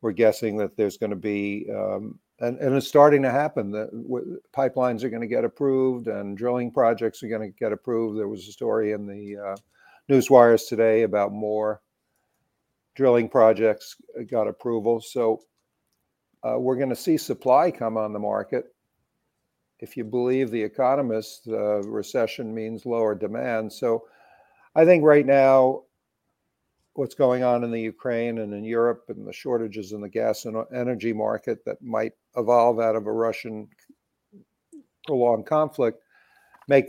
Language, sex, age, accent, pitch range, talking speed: English, male, 60-79, American, 110-130 Hz, 160 wpm